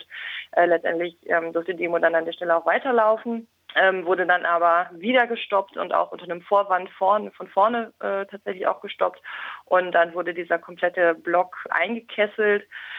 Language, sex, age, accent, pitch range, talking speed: German, female, 20-39, German, 170-185 Hz, 150 wpm